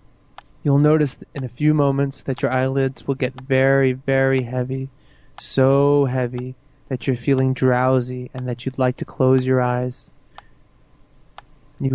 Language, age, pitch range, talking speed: English, 30-49, 130-145 Hz, 145 wpm